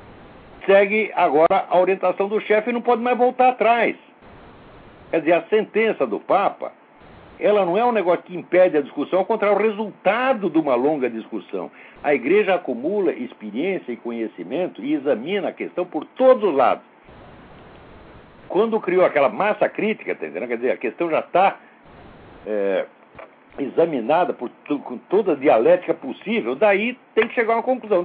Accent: Brazilian